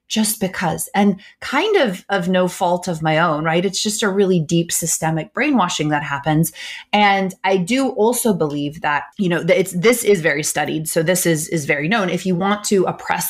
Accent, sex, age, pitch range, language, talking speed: American, female, 30-49, 160-200 Hz, English, 205 wpm